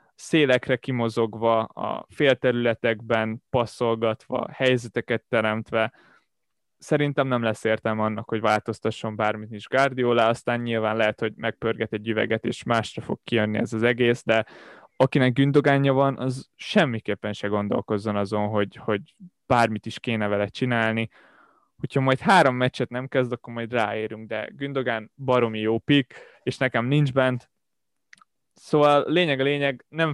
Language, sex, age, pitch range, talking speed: Hungarian, male, 20-39, 110-130 Hz, 140 wpm